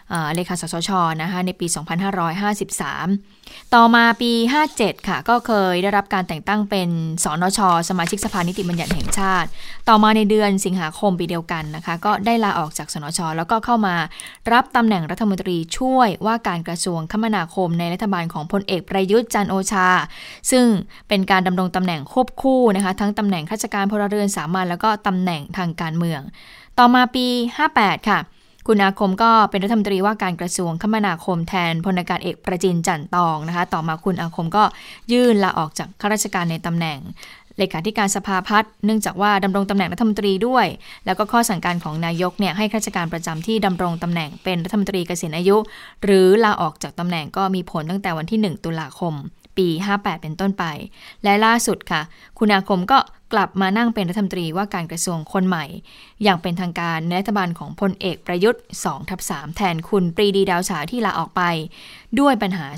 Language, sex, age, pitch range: Thai, female, 20-39, 175-210 Hz